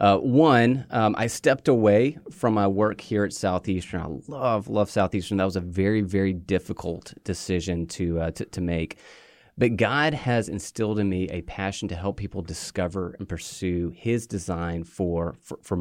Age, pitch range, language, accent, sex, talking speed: 30-49, 90-110 Hz, English, American, male, 180 wpm